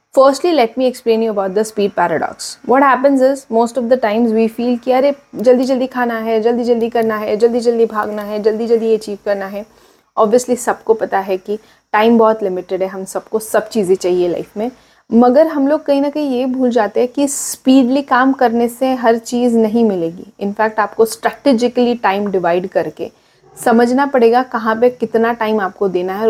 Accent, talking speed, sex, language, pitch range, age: Indian, 155 wpm, female, English, 200-245 Hz, 30-49